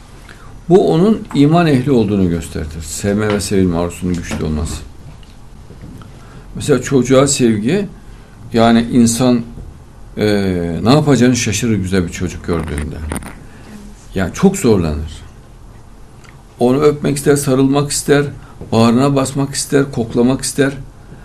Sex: male